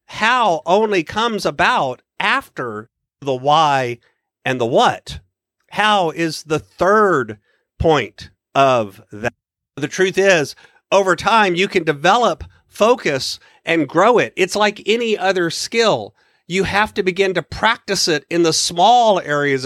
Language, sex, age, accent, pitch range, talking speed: English, male, 50-69, American, 155-195 Hz, 135 wpm